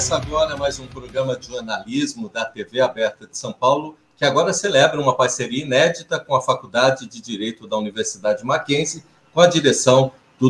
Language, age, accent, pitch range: Portuguese, 50-69, Brazilian, 130-170 Hz